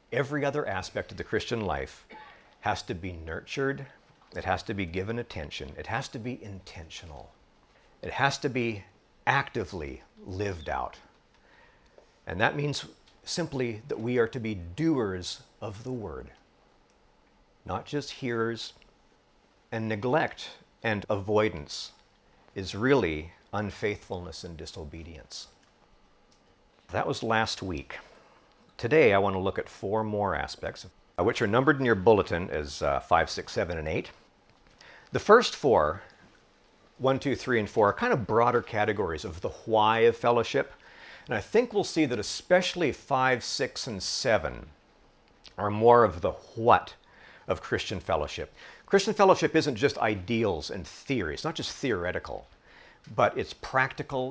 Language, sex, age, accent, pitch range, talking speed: English, male, 50-69, American, 95-135 Hz, 145 wpm